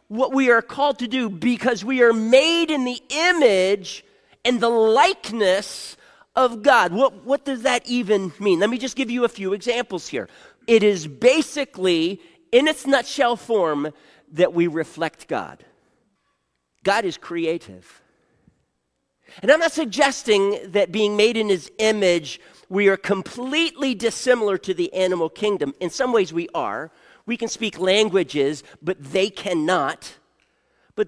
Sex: male